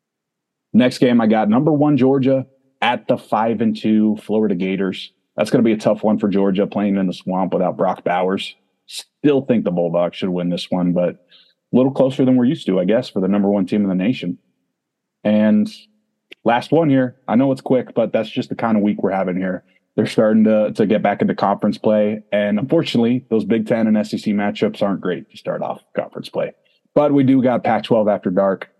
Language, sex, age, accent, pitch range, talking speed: English, male, 30-49, American, 100-120 Hz, 220 wpm